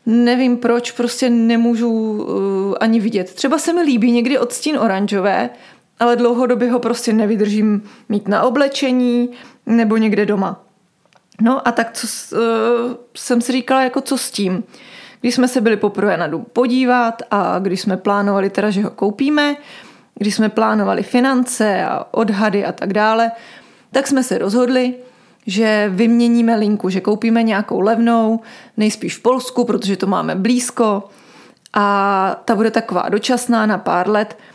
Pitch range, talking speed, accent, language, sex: 205-245 Hz, 155 wpm, native, Czech, female